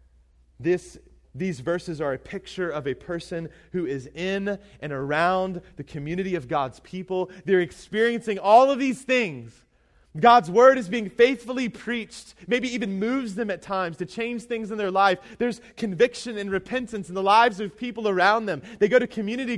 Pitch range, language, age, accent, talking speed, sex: 155-230 Hz, English, 20-39, American, 175 wpm, male